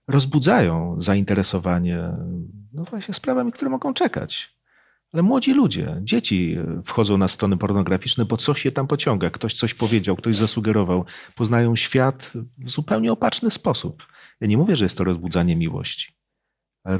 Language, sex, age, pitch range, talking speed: Polish, male, 40-59, 90-140 Hz, 145 wpm